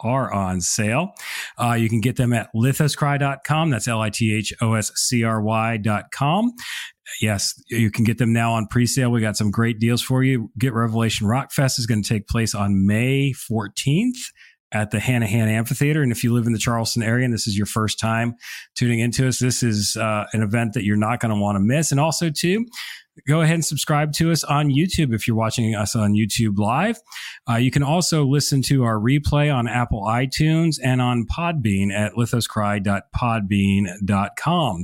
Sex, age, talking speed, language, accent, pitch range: male, 40-59, 185 wpm, English, American, 110-150 Hz